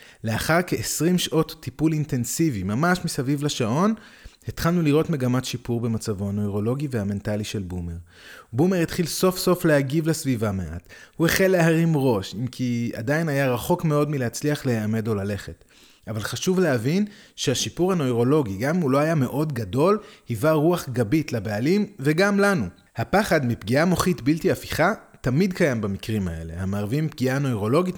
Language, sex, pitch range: Hebrew, male, 115-165 Hz